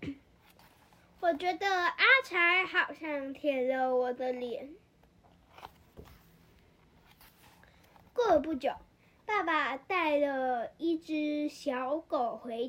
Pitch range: 270-345 Hz